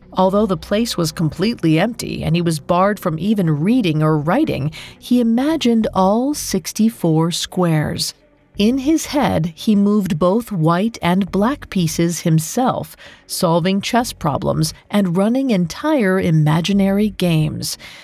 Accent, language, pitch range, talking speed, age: American, English, 165-225 Hz, 130 wpm, 40-59